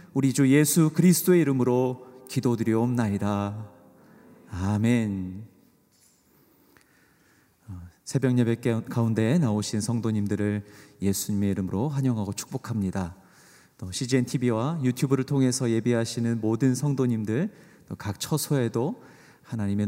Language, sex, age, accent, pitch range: Korean, male, 40-59, native, 100-130 Hz